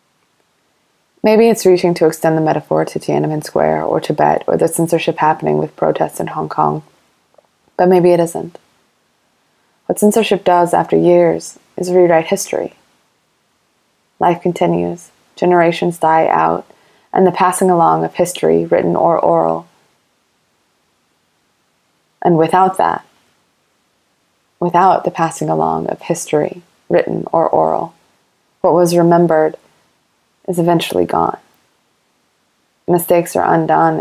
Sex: female